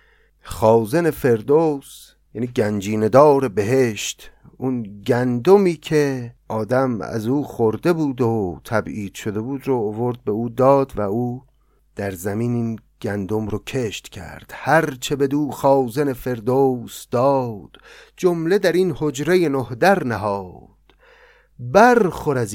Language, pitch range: Persian, 105-150 Hz